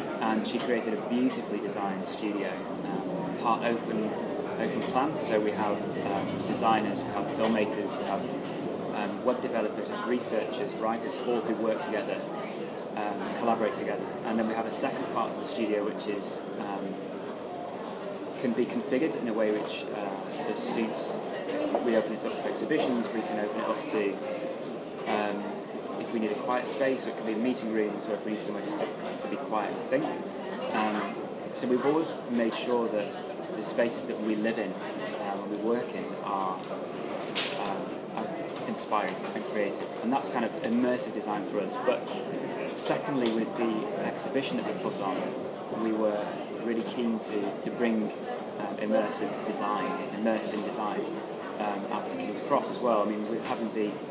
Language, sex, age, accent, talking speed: English, male, 20-39, British, 175 wpm